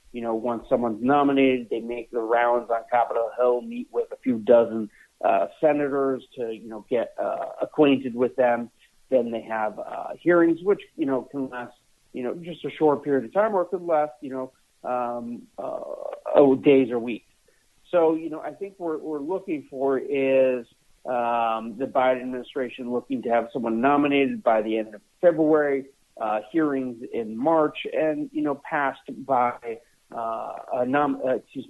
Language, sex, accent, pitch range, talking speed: English, male, American, 120-150 Hz, 180 wpm